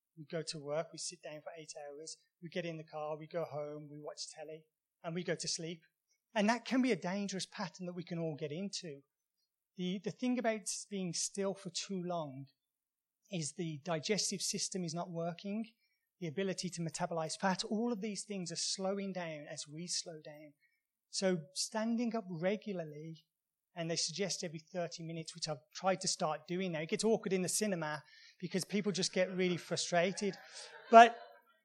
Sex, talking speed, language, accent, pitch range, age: male, 190 wpm, English, British, 160-200 Hz, 30-49